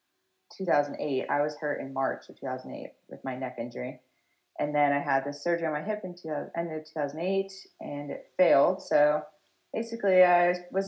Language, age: English, 30-49